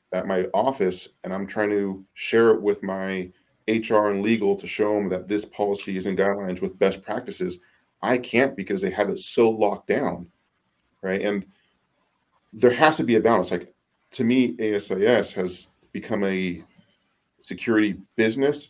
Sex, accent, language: male, American, English